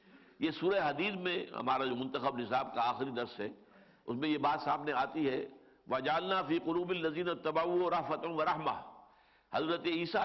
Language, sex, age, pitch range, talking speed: English, male, 60-79, 135-170 Hz, 170 wpm